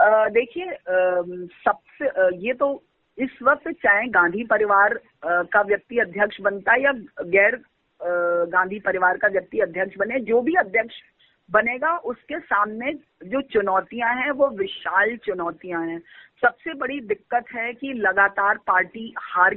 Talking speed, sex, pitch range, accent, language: 130 wpm, female, 195-255 Hz, native, Hindi